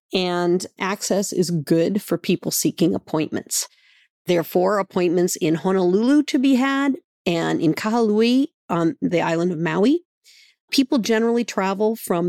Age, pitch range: 50-69, 160-225 Hz